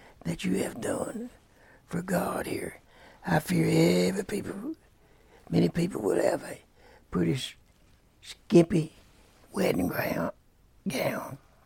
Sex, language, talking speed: male, English, 105 wpm